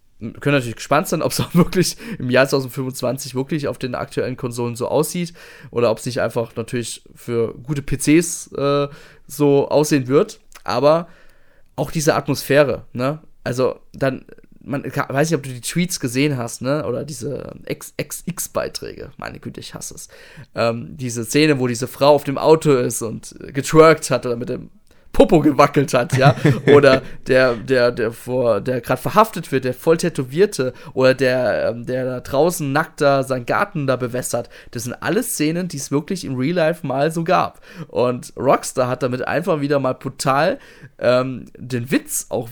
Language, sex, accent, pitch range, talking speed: German, male, German, 125-155 Hz, 175 wpm